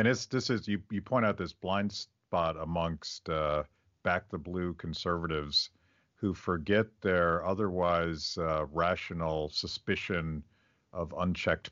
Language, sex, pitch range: English, male, 85-100 Hz